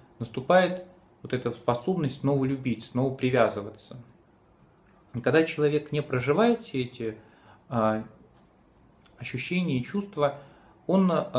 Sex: male